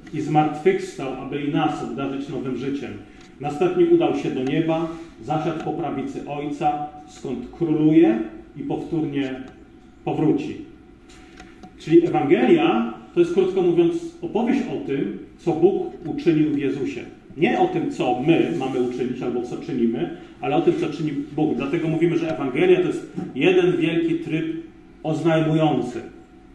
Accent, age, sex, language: native, 40-59, male, Polish